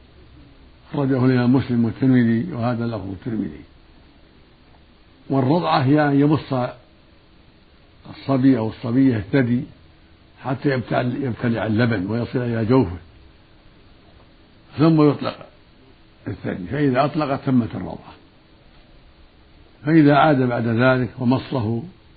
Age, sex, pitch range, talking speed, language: 60-79, male, 110-135 Hz, 90 wpm, Arabic